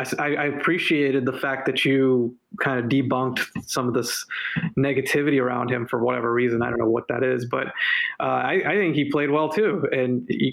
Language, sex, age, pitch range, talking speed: English, male, 20-39, 130-150 Hz, 200 wpm